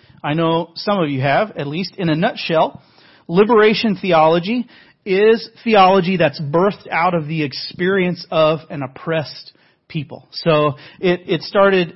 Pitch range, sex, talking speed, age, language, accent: 150-190 Hz, male, 145 wpm, 40-59, English, American